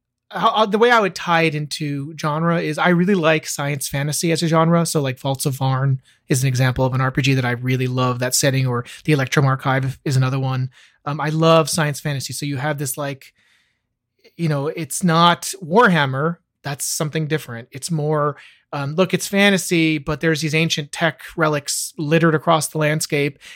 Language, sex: English, male